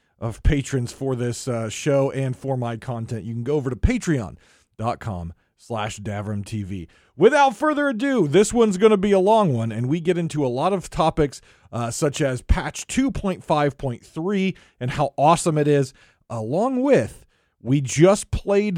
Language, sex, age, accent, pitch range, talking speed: English, male, 40-59, American, 125-210 Hz, 165 wpm